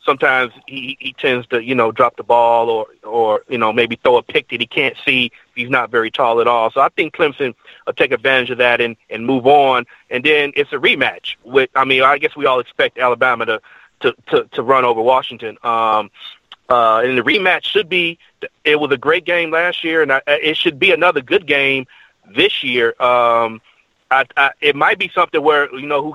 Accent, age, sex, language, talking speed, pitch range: American, 30-49, male, English, 225 wpm, 125-175 Hz